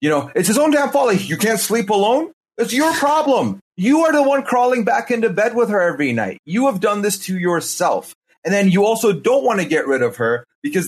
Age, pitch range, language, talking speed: 30-49, 155-205 Hz, English, 250 wpm